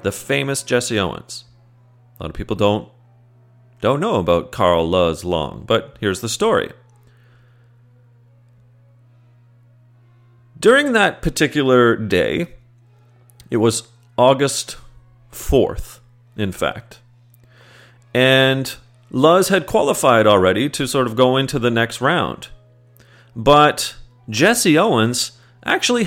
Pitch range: 120-150 Hz